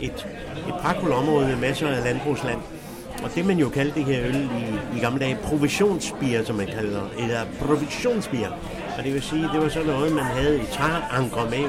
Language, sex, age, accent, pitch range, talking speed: English, male, 60-79, Danish, 125-155 Hz, 200 wpm